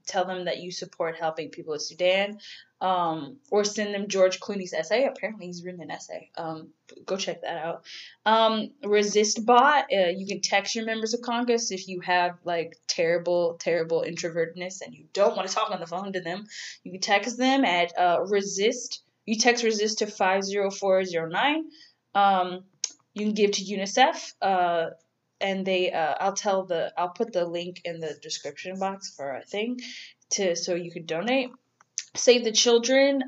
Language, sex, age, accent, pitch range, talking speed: English, female, 10-29, American, 175-220 Hz, 180 wpm